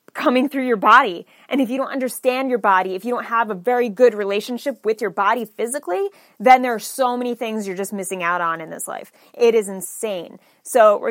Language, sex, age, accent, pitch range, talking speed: English, female, 20-39, American, 200-250 Hz, 225 wpm